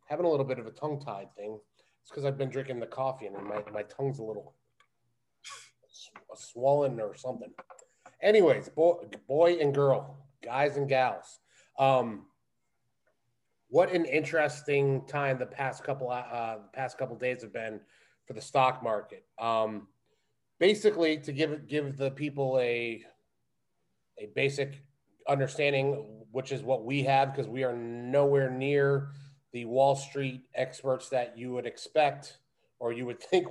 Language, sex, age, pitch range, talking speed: English, male, 30-49, 125-145 Hz, 150 wpm